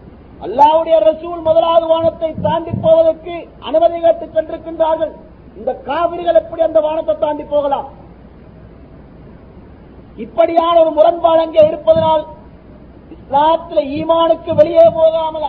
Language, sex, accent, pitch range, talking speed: Tamil, male, native, 285-325 Hz, 90 wpm